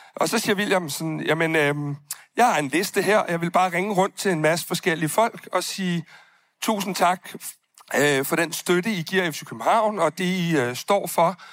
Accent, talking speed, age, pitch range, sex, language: native, 210 wpm, 60-79, 155-195 Hz, male, Danish